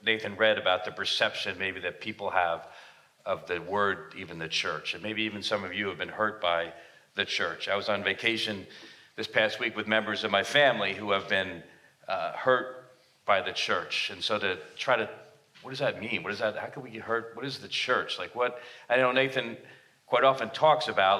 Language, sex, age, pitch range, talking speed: English, male, 40-59, 105-130 Hz, 220 wpm